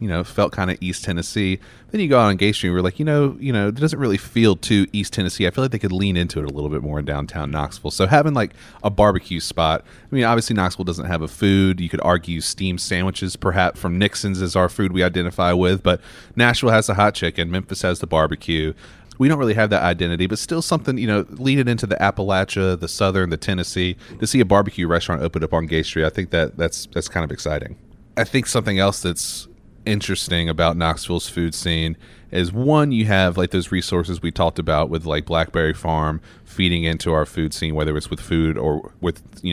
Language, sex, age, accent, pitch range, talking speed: English, male, 30-49, American, 85-105 Hz, 235 wpm